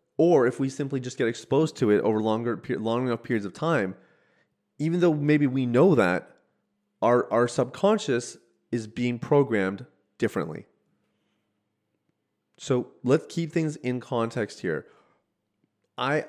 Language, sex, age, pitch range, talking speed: English, male, 30-49, 105-135 Hz, 135 wpm